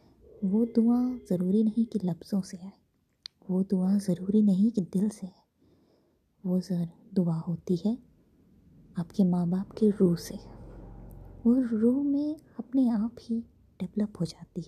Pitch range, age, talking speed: 185-220 Hz, 20-39, 145 wpm